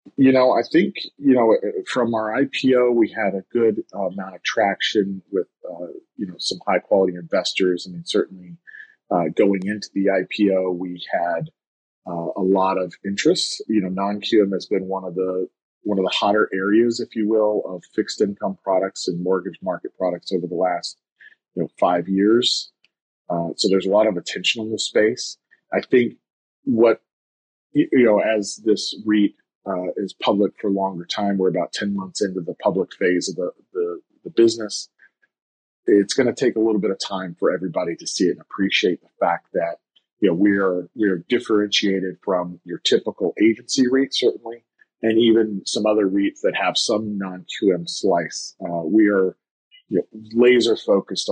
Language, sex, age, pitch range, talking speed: English, male, 40-59, 95-110 Hz, 185 wpm